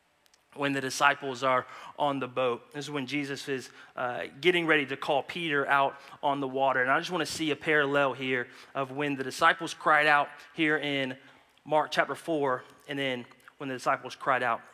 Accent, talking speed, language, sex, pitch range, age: American, 200 wpm, English, male, 140-180 Hz, 30-49